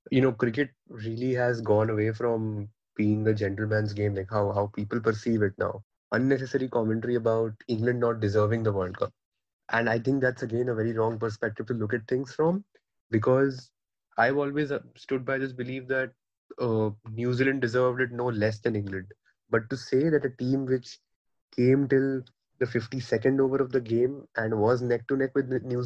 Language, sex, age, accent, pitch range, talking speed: English, male, 20-39, Indian, 110-130 Hz, 185 wpm